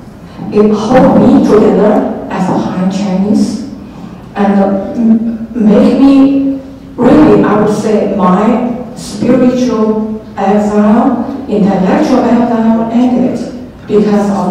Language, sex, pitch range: Chinese, female, 200-260 Hz